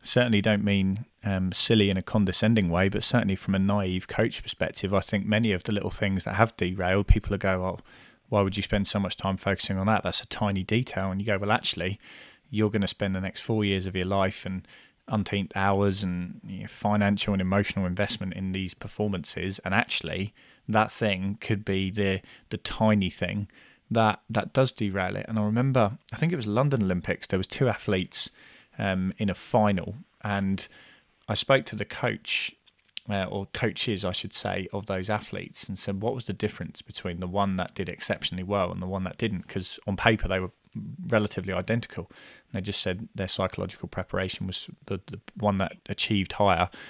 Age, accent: 20-39, British